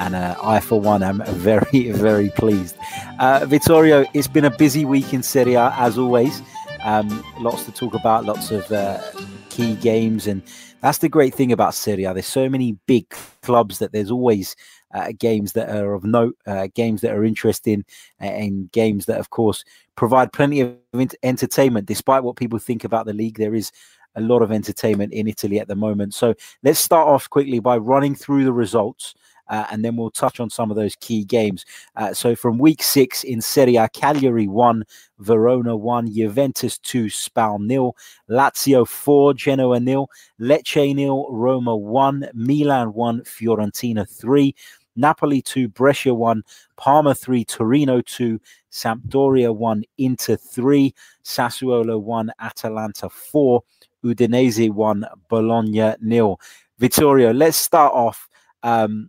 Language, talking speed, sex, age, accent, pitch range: English, 160 wpm, male, 30-49, British, 110-130 Hz